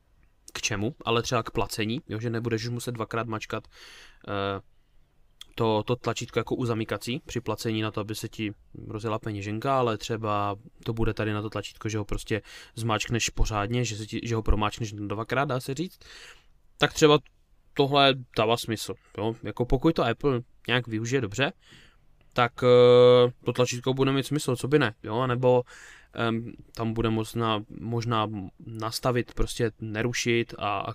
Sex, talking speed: male, 165 wpm